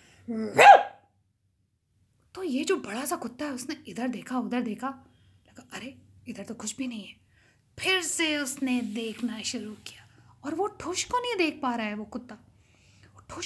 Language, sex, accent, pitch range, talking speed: Hindi, female, native, 240-335 Hz, 170 wpm